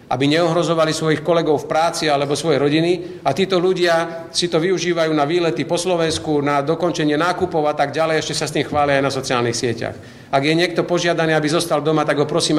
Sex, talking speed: male, 210 wpm